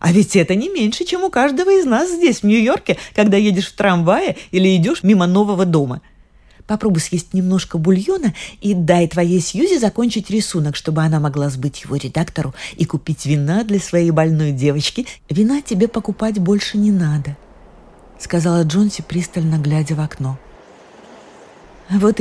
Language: Russian